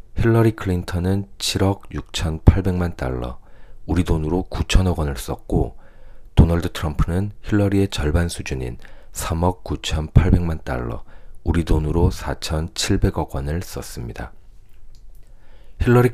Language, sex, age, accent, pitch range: Korean, male, 40-59, native, 75-100 Hz